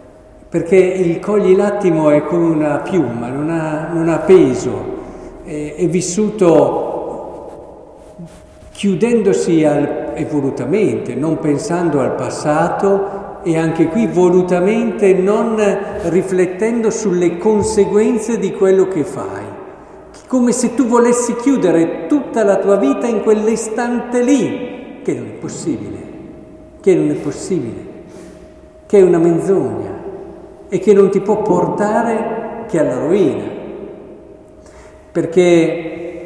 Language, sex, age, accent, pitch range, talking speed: Italian, male, 50-69, native, 145-205 Hz, 115 wpm